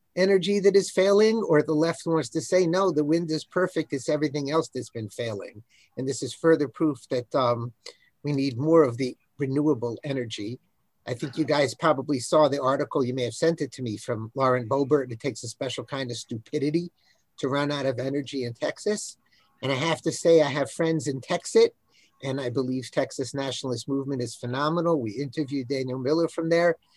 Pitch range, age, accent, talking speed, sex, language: 130-170 Hz, 50-69, American, 200 wpm, male, English